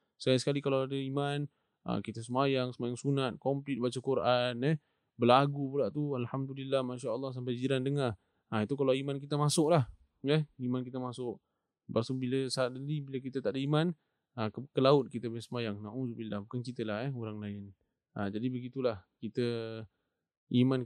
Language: English